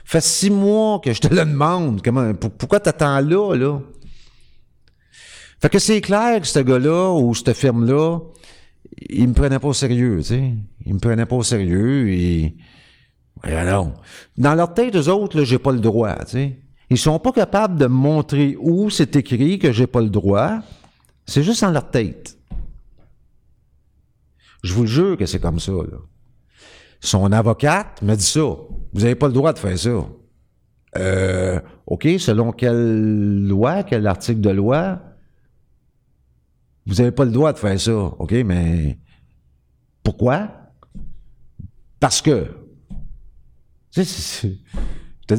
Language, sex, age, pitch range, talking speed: French, male, 50-69, 100-150 Hz, 165 wpm